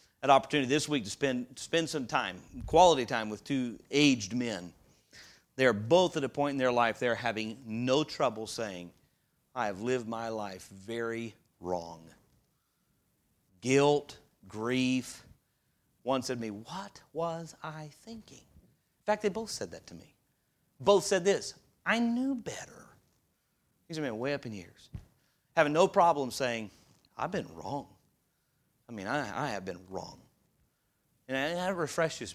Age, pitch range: 40-59, 115-150 Hz